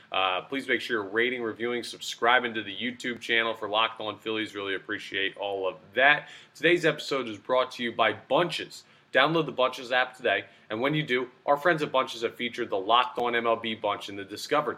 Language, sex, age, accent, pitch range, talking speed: English, male, 30-49, American, 110-130 Hz, 210 wpm